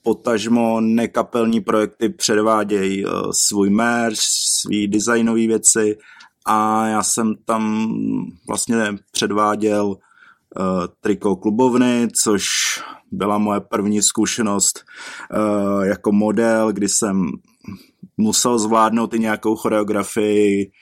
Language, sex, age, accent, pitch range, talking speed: Czech, male, 20-39, native, 100-110 Hz, 90 wpm